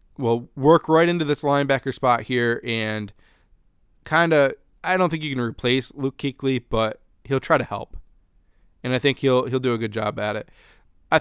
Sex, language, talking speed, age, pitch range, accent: male, English, 195 wpm, 20-39, 110-135 Hz, American